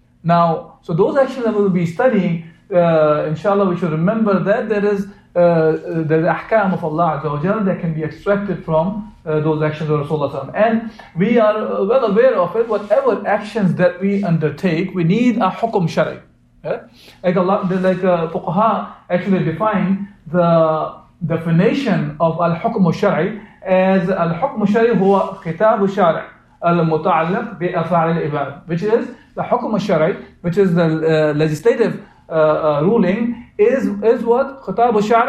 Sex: male